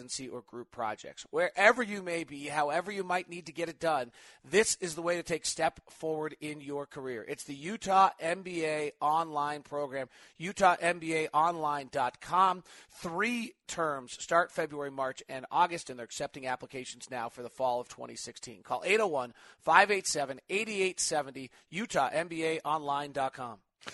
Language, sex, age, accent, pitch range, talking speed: English, male, 30-49, American, 140-180 Hz, 135 wpm